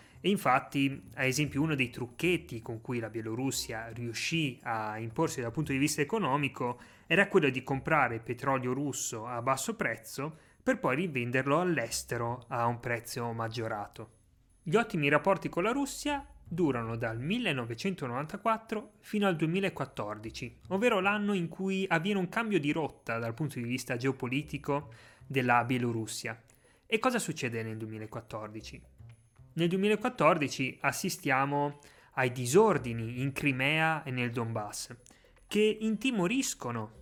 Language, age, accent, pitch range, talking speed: Italian, 30-49, native, 120-160 Hz, 130 wpm